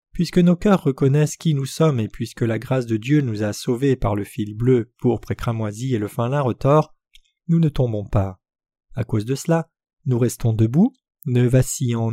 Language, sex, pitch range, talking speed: French, male, 115-155 Hz, 200 wpm